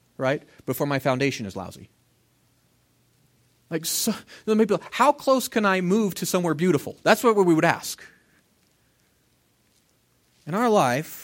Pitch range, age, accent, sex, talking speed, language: 130-190 Hz, 30-49, American, male, 130 wpm, English